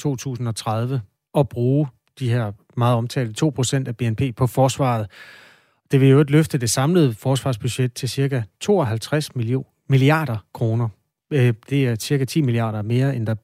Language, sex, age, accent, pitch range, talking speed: Danish, male, 30-49, native, 120-145 Hz, 145 wpm